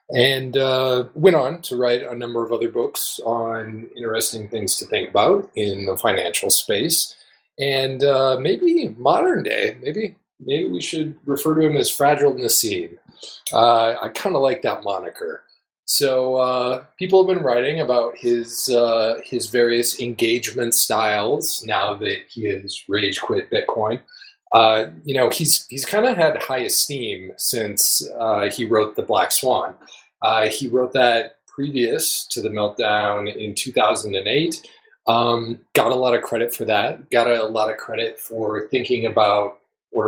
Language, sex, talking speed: English, male, 160 wpm